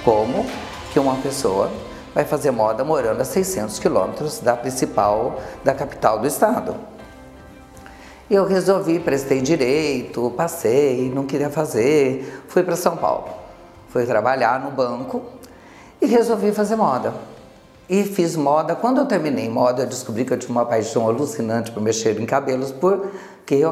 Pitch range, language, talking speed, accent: 130-195 Hz, Portuguese, 145 wpm, Brazilian